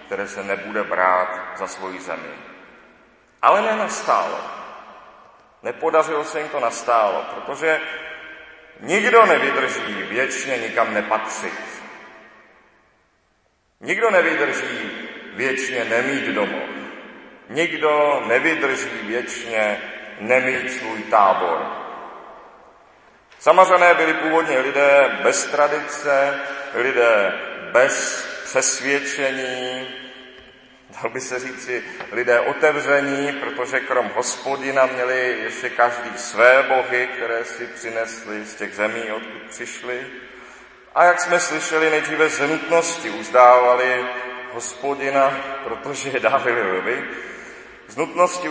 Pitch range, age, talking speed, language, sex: 120-155 Hz, 40-59, 95 wpm, Czech, male